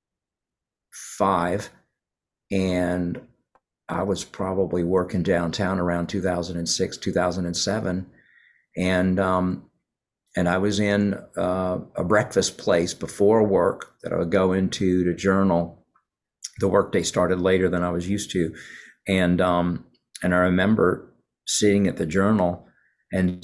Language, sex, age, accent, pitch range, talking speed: English, male, 50-69, American, 90-105 Hz, 125 wpm